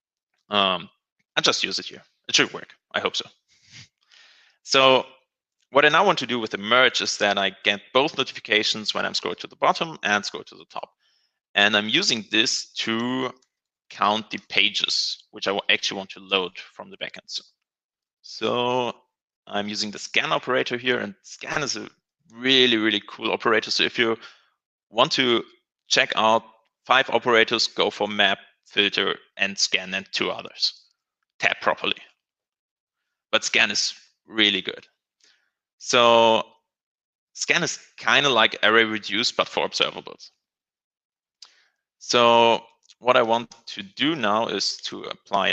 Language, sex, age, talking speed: English, male, 30-49, 160 wpm